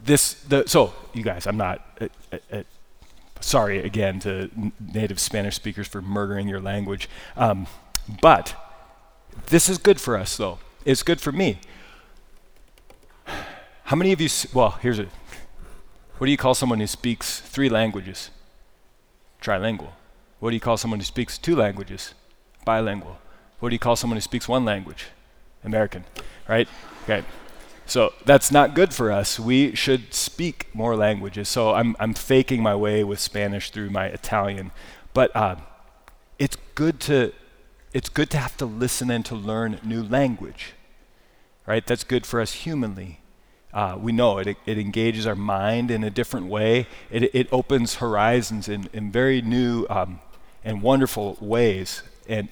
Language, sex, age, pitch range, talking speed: English, male, 30-49, 100-125 Hz, 160 wpm